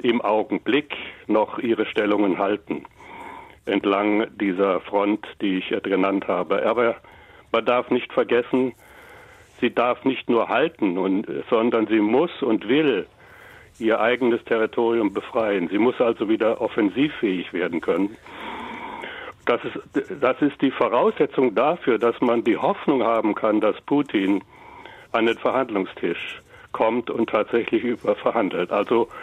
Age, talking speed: 60-79, 130 wpm